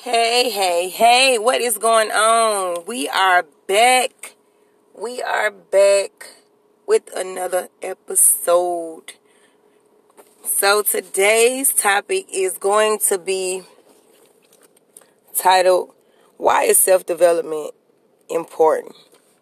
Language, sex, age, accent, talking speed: English, female, 20-39, American, 85 wpm